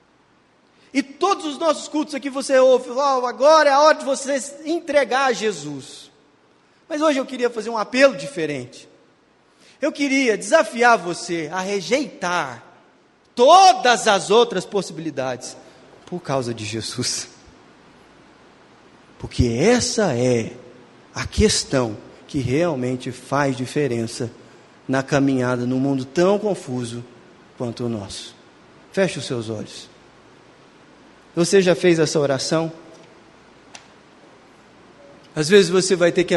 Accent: Brazilian